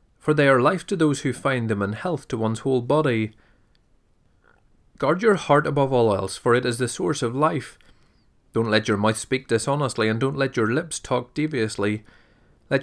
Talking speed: 195 wpm